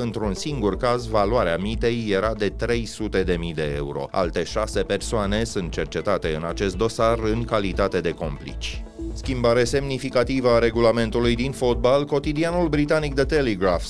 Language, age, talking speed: Romanian, 30-49, 145 wpm